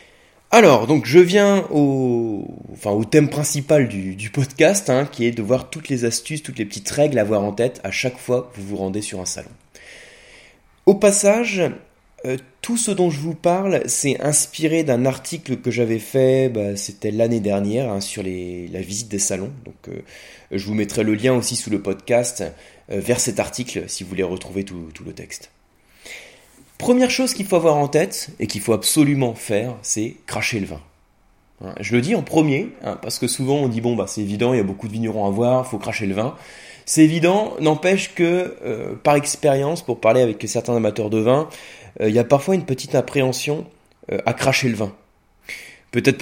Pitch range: 105-145 Hz